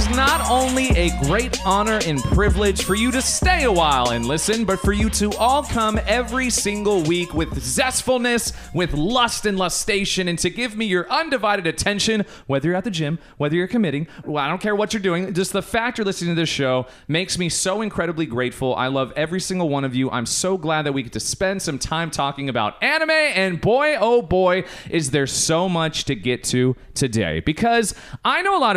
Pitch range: 150-215 Hz